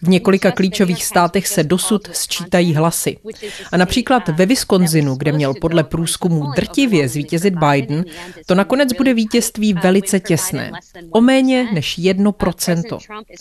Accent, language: native, Czech